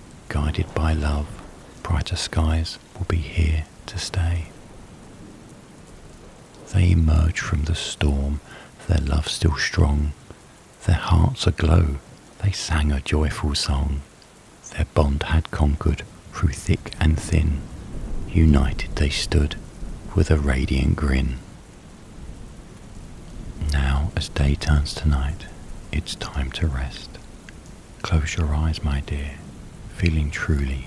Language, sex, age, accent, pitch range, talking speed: English, male, 40-59, British, 70-85 Hz, 115 wpm